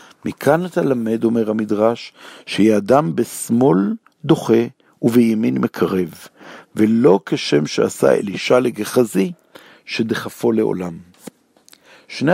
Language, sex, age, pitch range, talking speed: Hebrew, male, 60-79, 110-145 Hz, 90 wpm